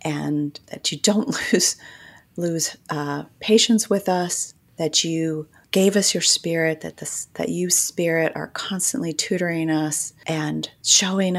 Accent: American